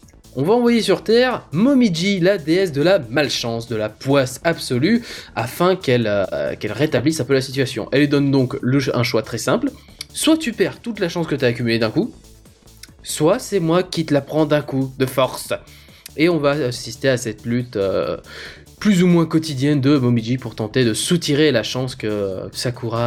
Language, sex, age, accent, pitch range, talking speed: French, male, 20-39, French, 115-175 Hz, 200 wpm